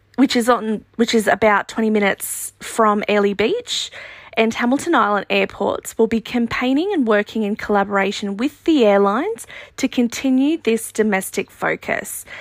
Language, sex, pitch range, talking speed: English, female, 205-250 Hz, 145 wpm